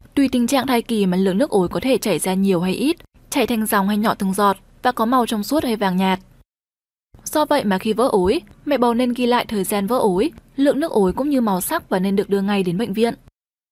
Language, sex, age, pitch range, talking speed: Vietnamese, female, 10-29, 195-265 Hz, 265 wpm